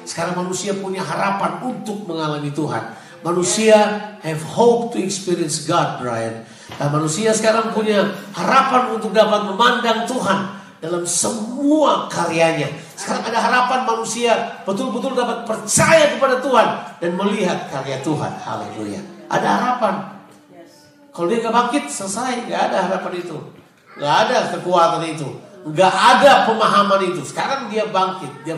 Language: Indonesian